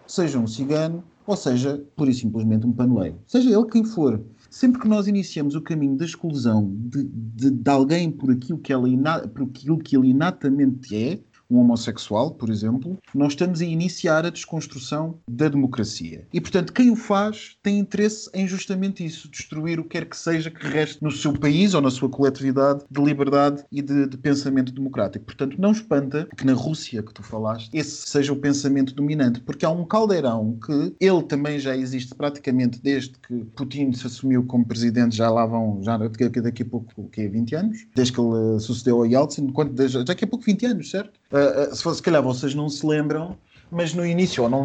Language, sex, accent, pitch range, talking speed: Portuguese, male, Portuguese, 125-165 Hz, 195 wpm